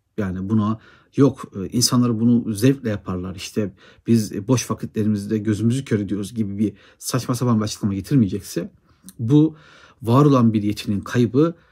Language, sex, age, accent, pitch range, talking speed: Turkish, male, 60-79, native, 100-125 Hz, 140 wpm